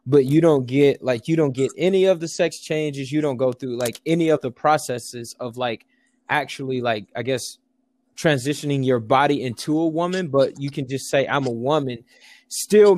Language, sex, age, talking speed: English, male, 20-39, 200 wpm